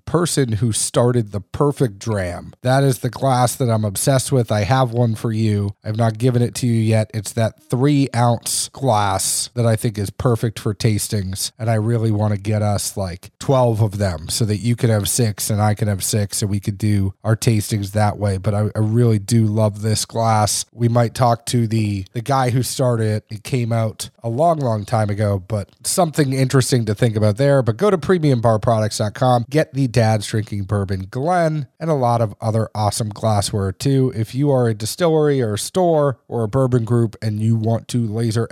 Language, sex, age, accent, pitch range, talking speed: English, male, 30-49, American, 105-130 Hz, 210 wpm